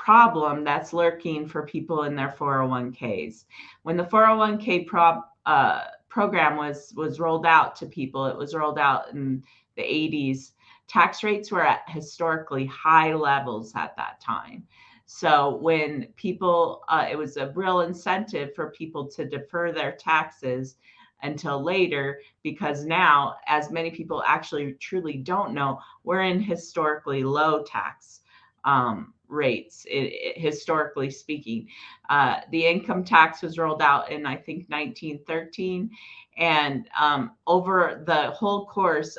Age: 40-59